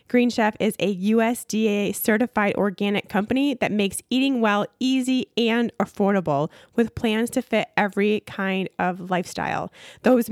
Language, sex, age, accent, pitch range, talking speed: English, female, 20-39, American, 190-235 Hz, 135 wpm